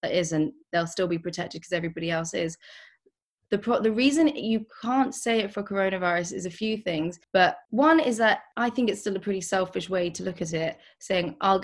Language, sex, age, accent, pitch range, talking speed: English, female, 20-39, British, 175-210 Hz, 210 wpm